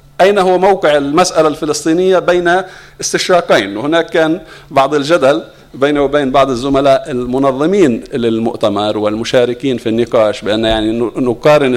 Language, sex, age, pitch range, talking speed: English, male, 50-69, 135-170 Hz, 115 wpm